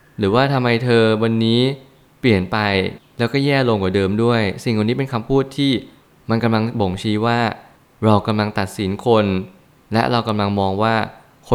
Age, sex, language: 20-39, male, Thai